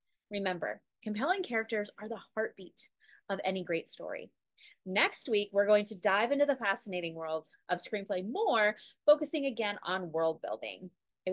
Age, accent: 30-49, American